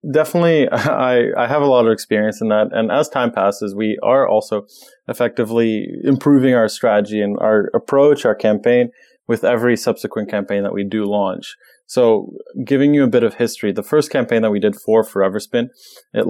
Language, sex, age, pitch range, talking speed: English, male, 20-39, 105-125 Hz, 190 wpm